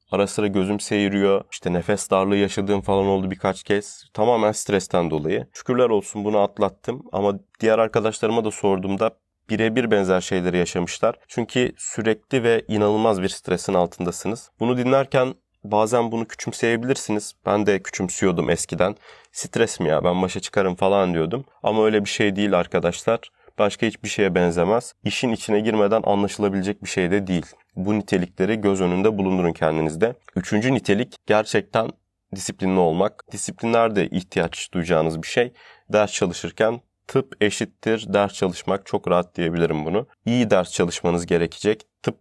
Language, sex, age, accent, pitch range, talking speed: Turkish, male, 30-49, native, 90-110 Hz, 145 wpm